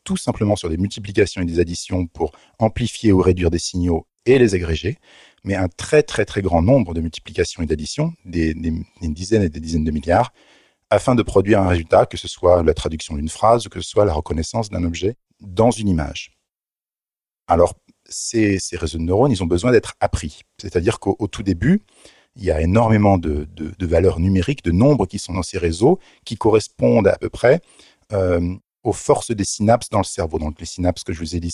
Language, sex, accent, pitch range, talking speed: French, male, French, 85-105 Hz, 215 wpm